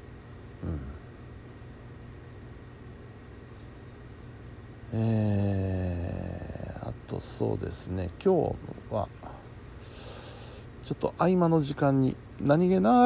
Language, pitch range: Japanese, 105-120 Hz